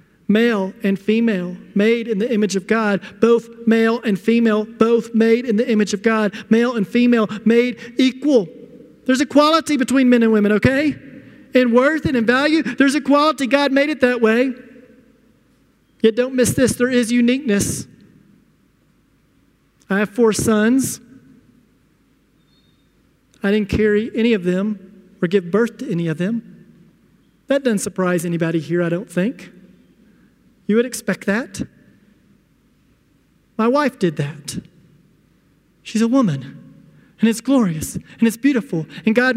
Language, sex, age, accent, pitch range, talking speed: English, male, 40-59, American, 205-255 Hz, 145 wpm